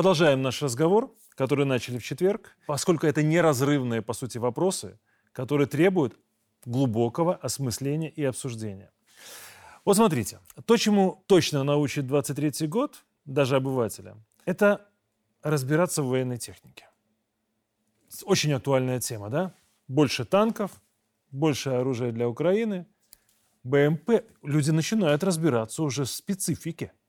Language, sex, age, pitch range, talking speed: Russian, male, 30-49, 120-170 Hz, 115 wpm